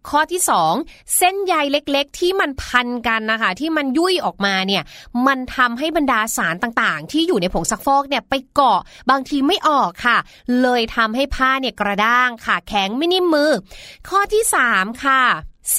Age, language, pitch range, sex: 20-39, Thai, 240-315 Hz, female